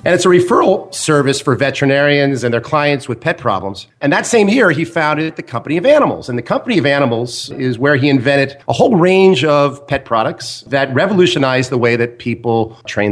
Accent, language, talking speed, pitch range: American, English, 205 wpm, 120-155 Hz